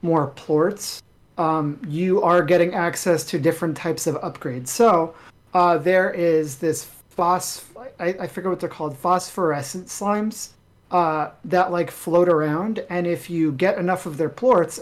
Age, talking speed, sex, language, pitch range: 40-59, 150 wpm, male, English, 150-180 Hz